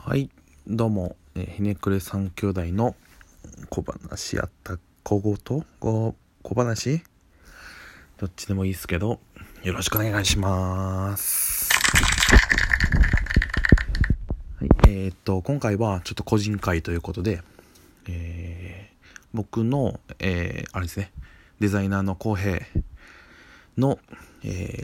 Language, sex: Japanese, male